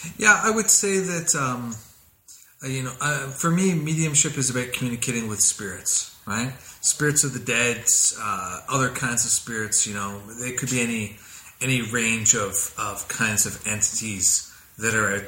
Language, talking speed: English, 170 wpm